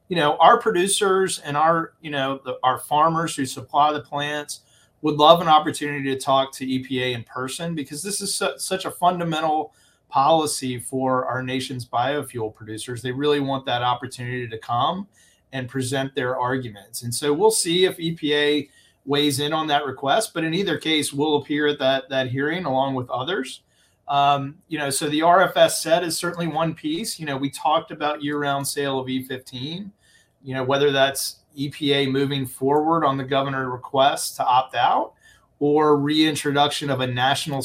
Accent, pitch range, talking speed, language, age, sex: American, 130-150 Hz, 175 wpm, English, 30-49, male